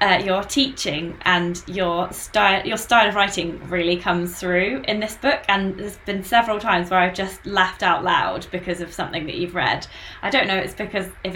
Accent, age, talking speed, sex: British, 20-39, 205 wpm, female